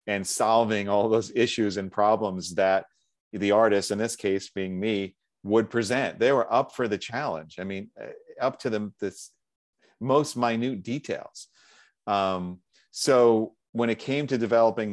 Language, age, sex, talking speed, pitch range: English, 40-59, male, 155 wpm, 95-110 Hz